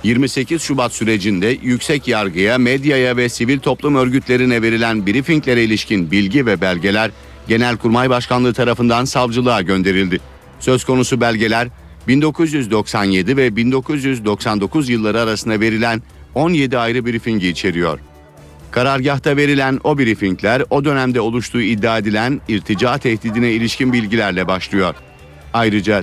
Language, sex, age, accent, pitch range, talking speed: Turkish, male, 50-69, native, 105-130 Hz, 115 wpm